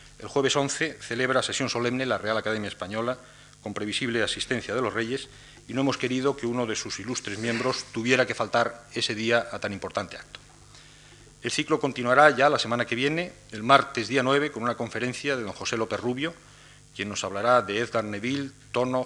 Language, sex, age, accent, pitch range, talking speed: Spanish, male, 40-59, Spanish, 110-135 Hz, 195 wpm